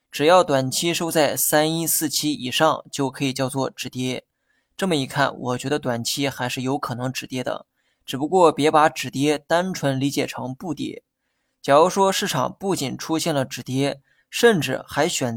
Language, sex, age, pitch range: Chinese, male, 20-39, 135-160 Hz